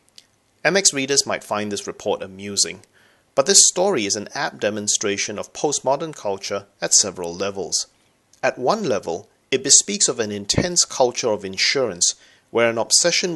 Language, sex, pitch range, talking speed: English, male, 105-155 Hz, 155 wpm